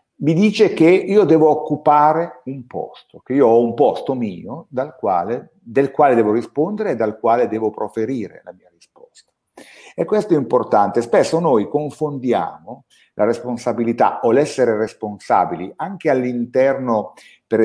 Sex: male